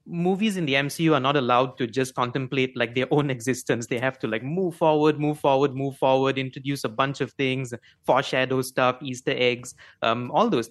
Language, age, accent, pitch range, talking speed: English, 30-49, Indian, 130-160 Hz, 215 wpm